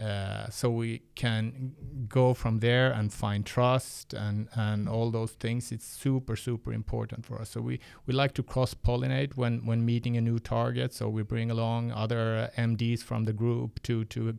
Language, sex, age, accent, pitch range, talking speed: Swedish, male, 30-49, Norwegian, 110-125 Hz, 190 wpm